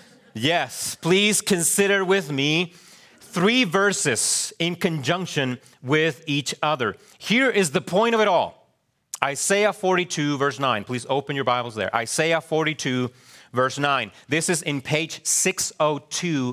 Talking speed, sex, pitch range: 135 wpm, male, 120-170 Hz